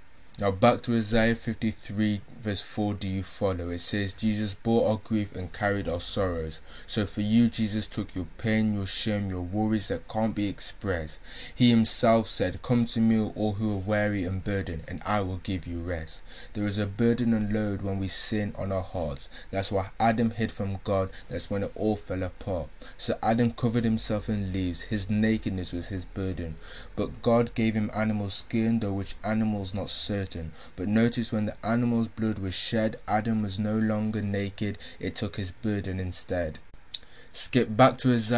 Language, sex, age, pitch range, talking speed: English, male, 20-39, 95-110 Hz, 190 wpm